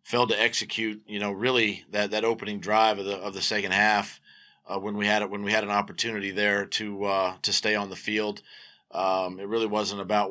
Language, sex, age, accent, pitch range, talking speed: English, male, 40-59, American, 105-125 Hz, 225 wpm